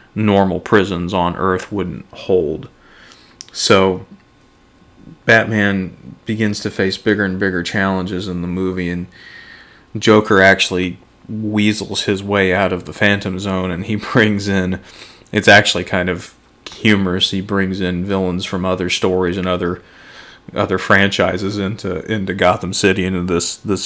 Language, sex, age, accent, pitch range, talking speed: English, male, 30-49, American, 90-100 Hz, 140 wpm